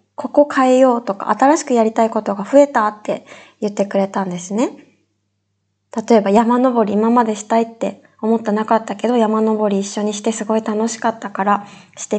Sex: female